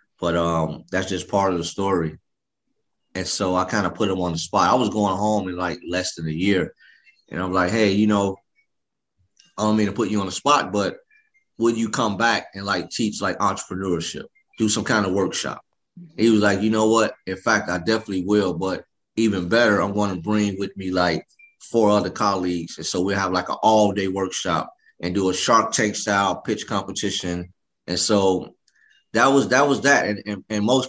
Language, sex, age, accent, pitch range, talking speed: English, male, 30-49, American, 90-105 Hz, 210 wpm